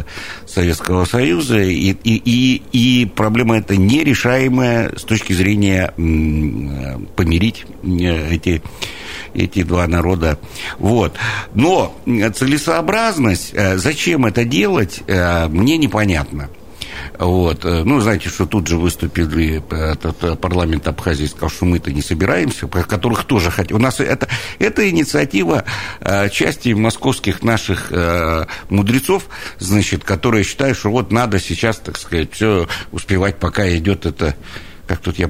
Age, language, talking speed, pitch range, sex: 60-79, Russian, 115 wpm, 90-120 Hz, male